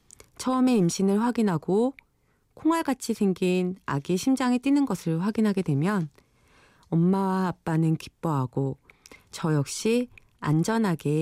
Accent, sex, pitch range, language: native, female, 150-215 Hz, Korean